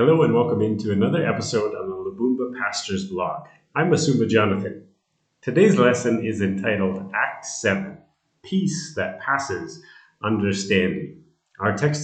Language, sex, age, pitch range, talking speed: English, male, 30-49, 100-150 Hz, 130 wpm